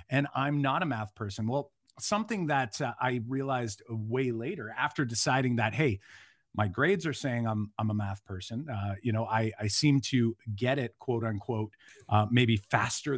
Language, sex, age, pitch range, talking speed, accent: English, male, 40-59, 110-140 Hz, 185 wpm, American